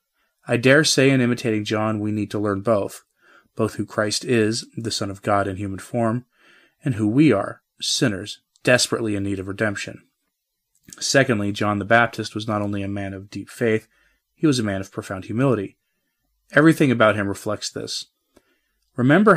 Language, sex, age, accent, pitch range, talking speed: English, male, 30-49, American, 105-130 Hz, 175 wpm